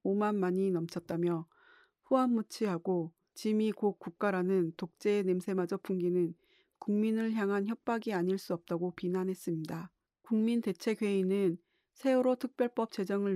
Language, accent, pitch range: Korean, native, 180-215 Hz